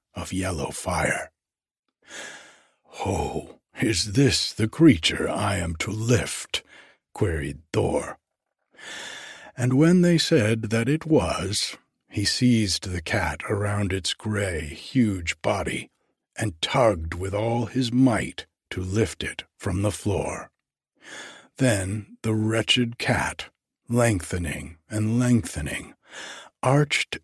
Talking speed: 110 wpm